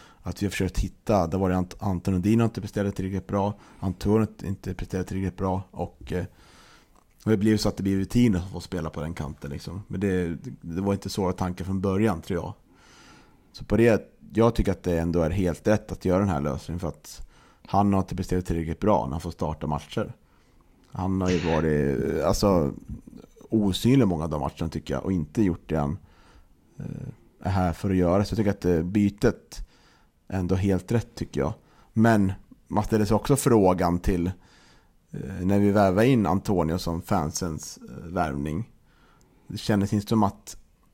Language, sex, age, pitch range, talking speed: Swedish, male, 30-49, 85-105 Hz, 190 wpm